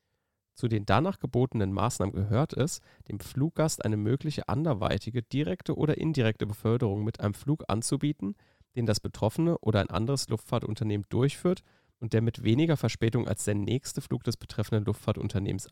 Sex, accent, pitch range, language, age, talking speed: male, German, 105-135 Hz, German, 40-59, 155 wpm